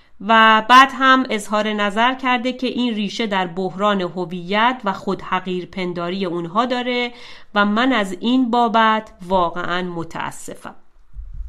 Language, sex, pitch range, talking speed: Persian, female, 170-210 Hz, 125 wpm